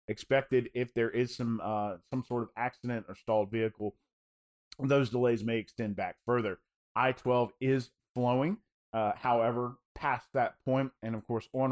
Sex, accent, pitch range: male, American, 105-130 Hz